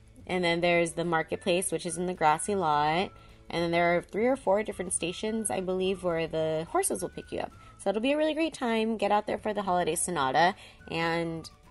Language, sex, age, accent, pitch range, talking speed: English, female, 20-39, American, 175-230 Hz, 225 wpm